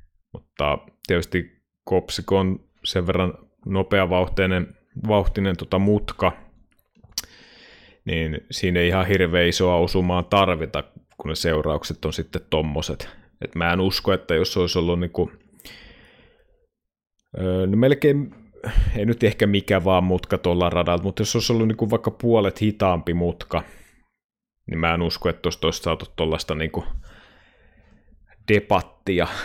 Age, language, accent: 30-49, Finnish, native